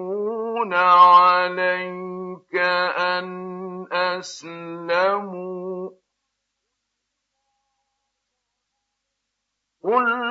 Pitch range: 205-270 Hz